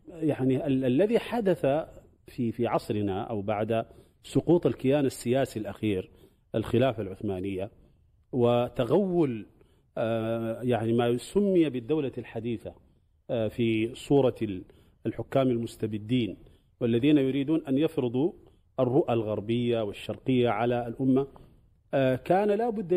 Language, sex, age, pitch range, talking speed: Arabic, male, 40-59, 115-150 Hz, 105 wpm